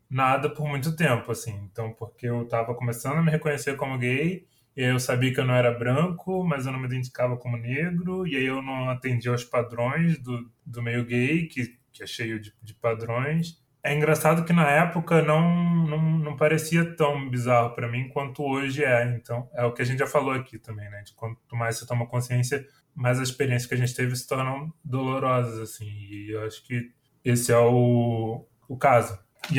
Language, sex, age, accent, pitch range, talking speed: Portuguese, male, 20-39, Brazilian, 120-150 Hz, 210 wpm